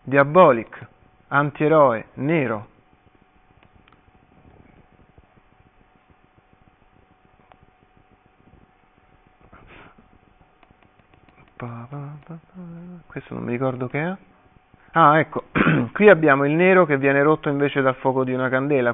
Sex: male